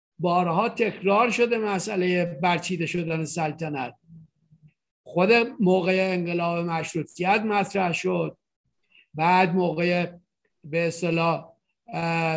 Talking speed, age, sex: 80 wpm, 50-69, male